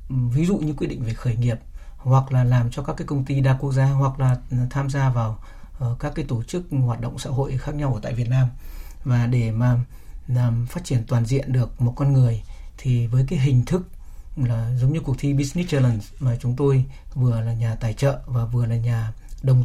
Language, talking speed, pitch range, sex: Vietnamese, 230 wpm, 120-140 Hz, male